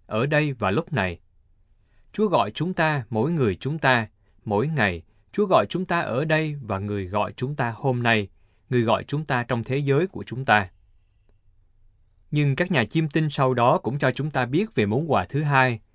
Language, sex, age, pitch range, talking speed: Vietnamese, male, 20-39, 100-135 Hz, 205 wpm